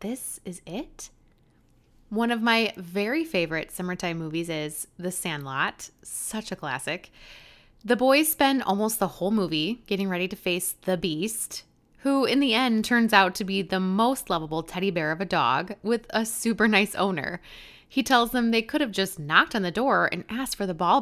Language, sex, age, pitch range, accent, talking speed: English, female, 20-39, 180-235 Hz, American, 190 wpm